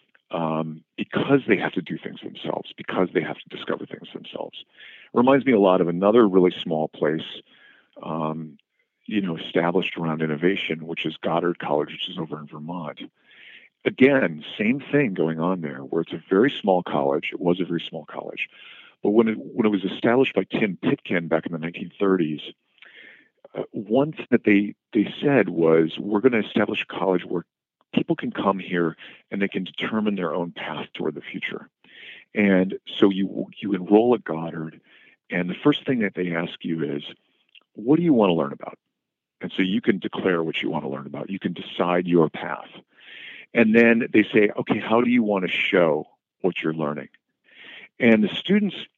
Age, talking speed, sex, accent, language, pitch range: 50-69, 190 wpm, male, American, English, 80-110 Hz